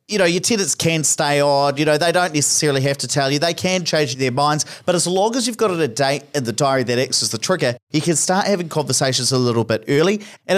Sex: male